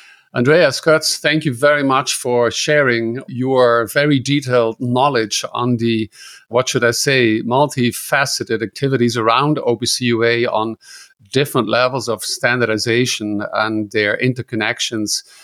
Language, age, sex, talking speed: English, 50-69, male, 120 wpm